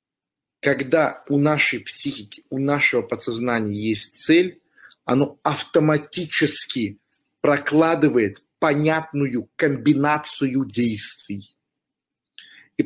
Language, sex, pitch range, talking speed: Russian, male, 115-150 Hz, 75 wpm